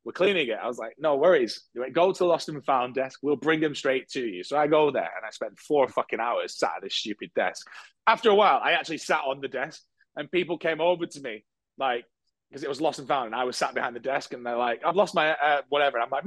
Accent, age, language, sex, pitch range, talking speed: British, 30-49, English, male, 130-175 Hz, 275 wpm